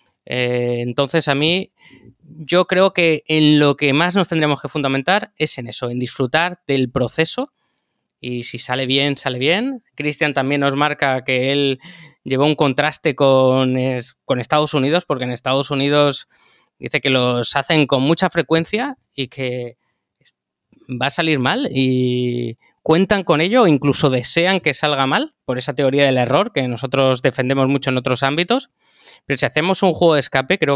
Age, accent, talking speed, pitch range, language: 20-39, Spanish, 170 wpm, 130-165 Hz, Spanish